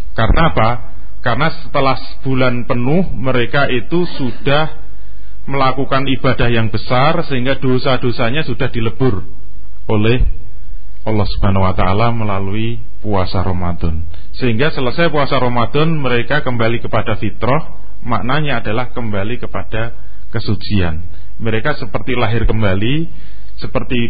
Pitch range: 100-140 Hz